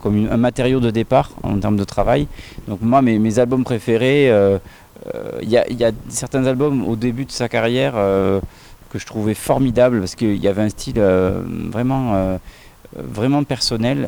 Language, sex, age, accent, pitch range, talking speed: French, male, 30-49, French, 100-120 Hz, 185 wpm